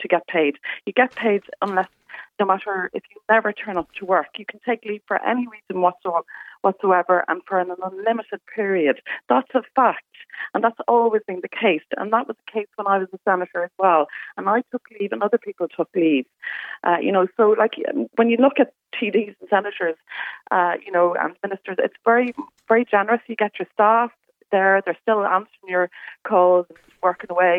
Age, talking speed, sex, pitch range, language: 30-49, 200 wpm, female, 175-225 Hz, English